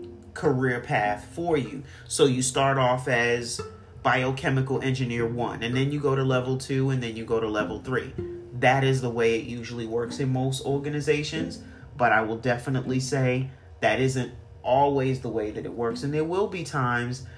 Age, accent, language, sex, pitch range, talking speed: 40-59, American, English, male, 120-145 Hz, 185 wpm